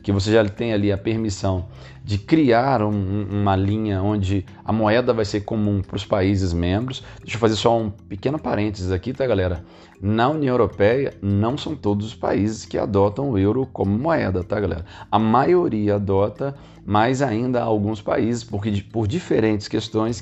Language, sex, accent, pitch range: Portuguese, male, Brazilian, 95-115 Hz